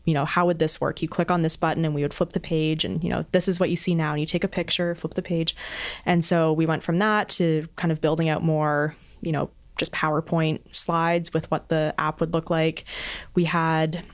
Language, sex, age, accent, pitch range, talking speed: English, female, 20-39, American, 155-180 Hz, 255 wpm